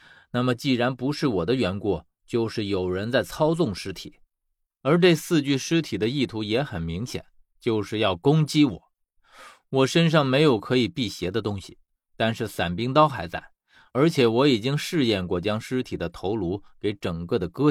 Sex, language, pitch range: male, Chinese, 100-145 Hz